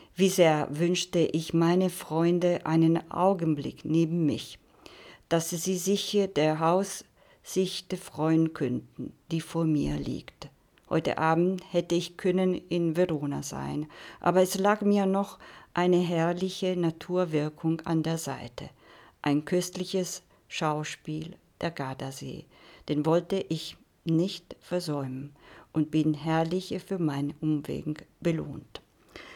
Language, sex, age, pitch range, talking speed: Italian, female, 50-69, 160-180 Hz, 115 wpm